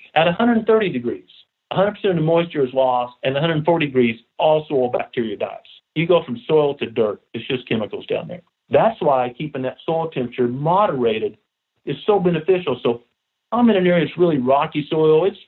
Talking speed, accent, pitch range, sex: 180 wpm, American, 130-180 Hz, male